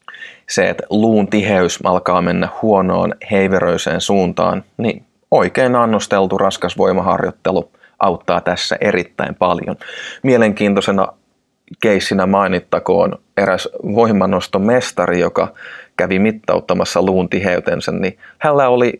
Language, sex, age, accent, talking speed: Finnish, male, 30-49, native, 100 wpm